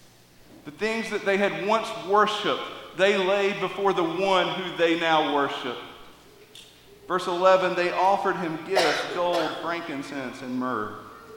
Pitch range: 160-210 Hz